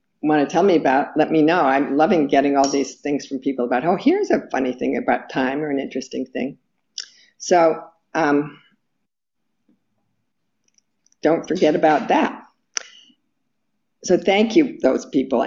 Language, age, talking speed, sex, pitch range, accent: English, 50-69, 150 wpm, female, 145-190 Hz, American